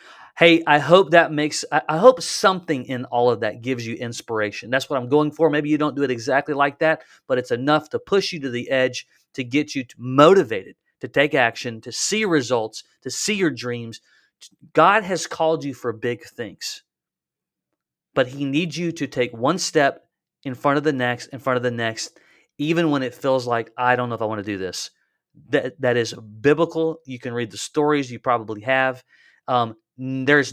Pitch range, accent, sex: 120-155 Hz, American, male